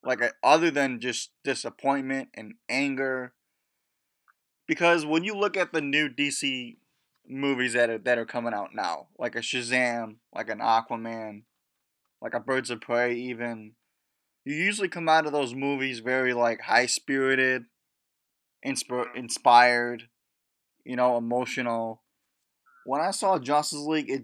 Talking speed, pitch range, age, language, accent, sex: 135 wpm, 120-145 Hz, 20-39, English, American, male